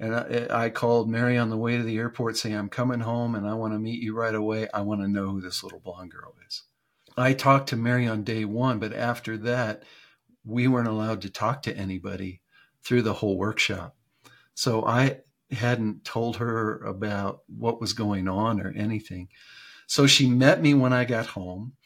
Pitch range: 105-120 Hz